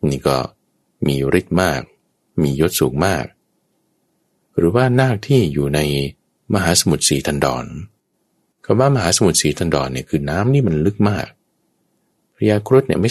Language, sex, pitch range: Thai, male, 70-105 Hz